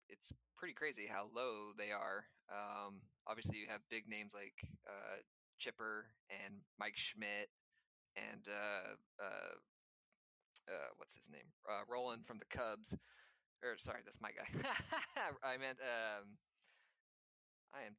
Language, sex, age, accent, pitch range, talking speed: English, male, 20-39, American, 105-120 Hz, 135 wpm